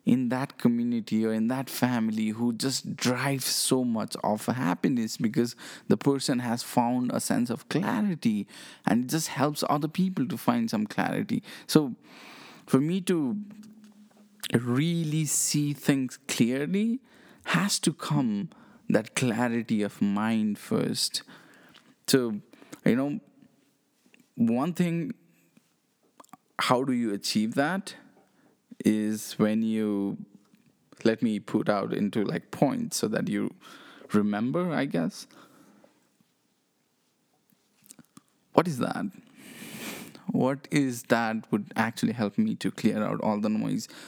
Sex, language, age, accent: male, English, 20-39, Indian